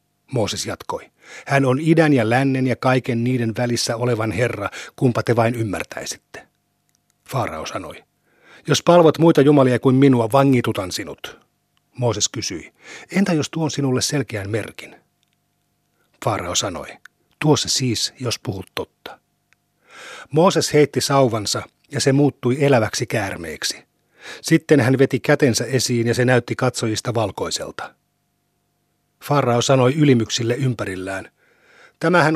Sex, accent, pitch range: male, native, 115-140 Hz